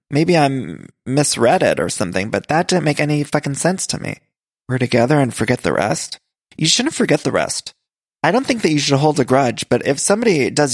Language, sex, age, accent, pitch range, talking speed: English, male, 20-39, American, 130-155 Hz, 220 wpm